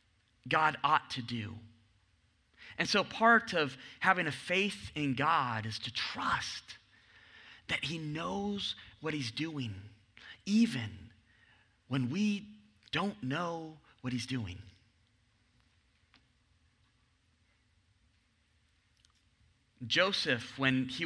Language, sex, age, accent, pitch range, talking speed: English, male, 30-49, American, 105-170 Hz, 95 wpm